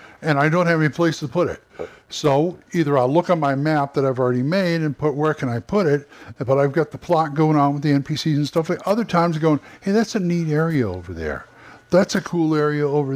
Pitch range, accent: 135-170 Hz, American